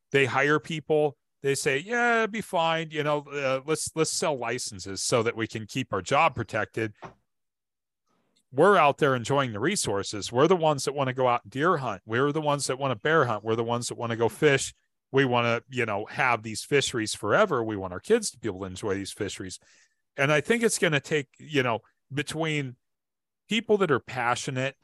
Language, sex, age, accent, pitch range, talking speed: English, male, 40-59, American, 110-135 Hz, 220 wpm